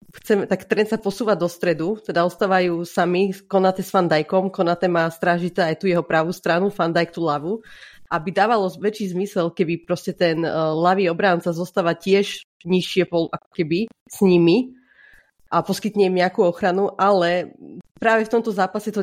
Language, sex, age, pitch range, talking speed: Slovak, female, 30-49, 175-205 Hz, 165 wpm